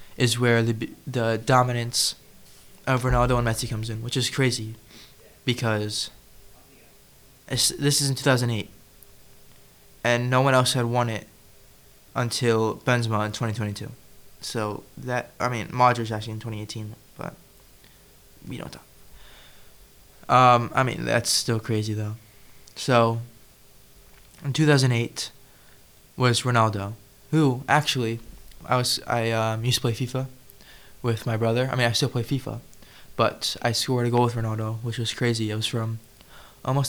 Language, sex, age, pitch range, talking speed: English, male, 20-39, 110-130 Hz, 145 wpm